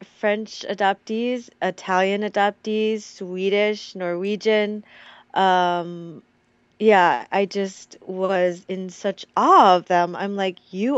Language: English